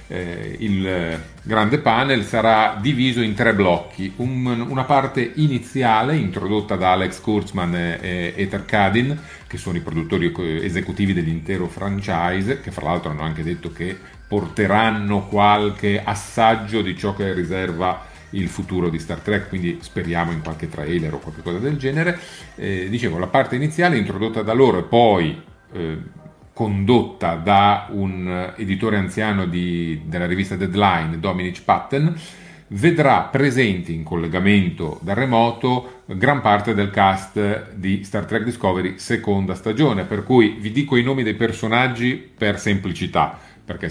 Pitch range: 90-115 Hz